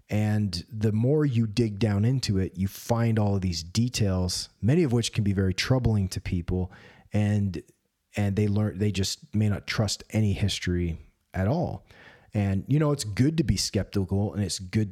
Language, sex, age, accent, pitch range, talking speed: English, male, 30-49, American, 95-115 Hz, 190 wpm